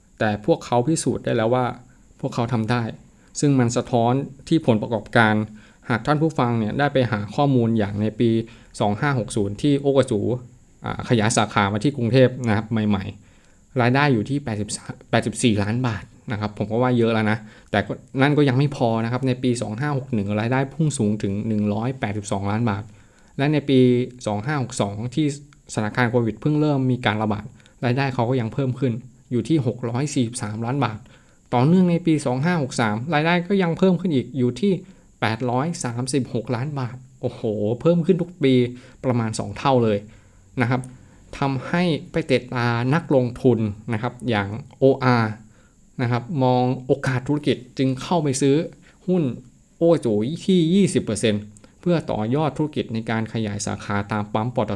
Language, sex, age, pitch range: Thai, male, 20-39, 110-140 Hz